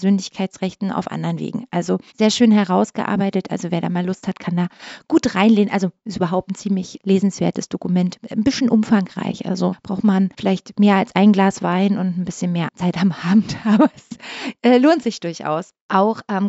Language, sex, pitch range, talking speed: German, female, 190-235 Hz, 190 wpm